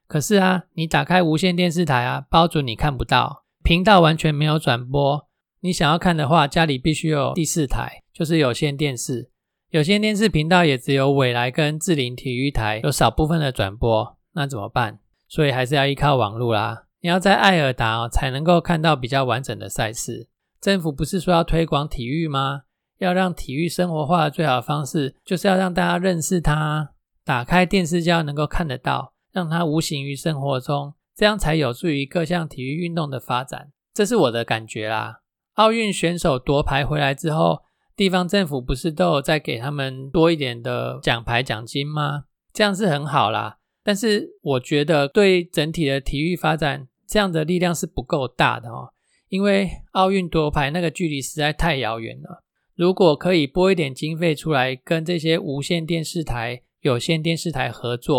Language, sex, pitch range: Chinese, male, 135-175 Hz